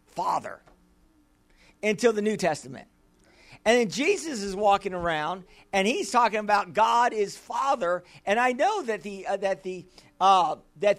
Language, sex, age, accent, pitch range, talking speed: English, male, 50-69, American, 195-280 Hz, 155 wpm